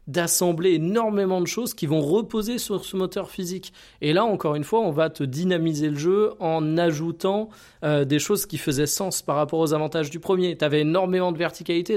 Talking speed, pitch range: 205 wpm, 150-190 Hz